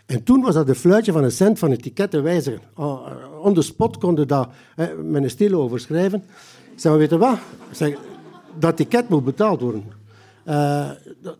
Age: 60-79